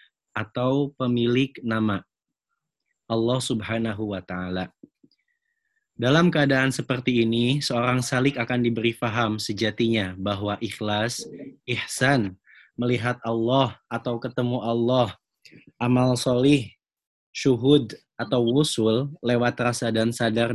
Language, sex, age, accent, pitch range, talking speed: Indonesian, male, 20-39, native, 110-125 Hz, 100 wpm